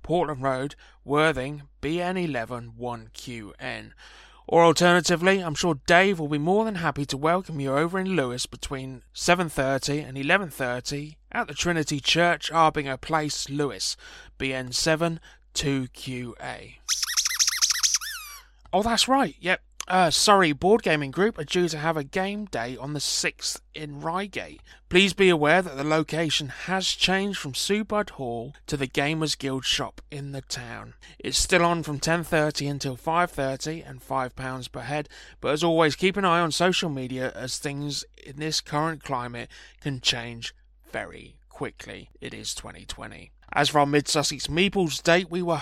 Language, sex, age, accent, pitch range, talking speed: English, male, 20-39, British, 135-175 Hz, 155 wpm